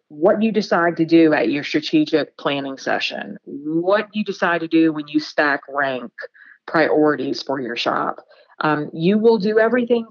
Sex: female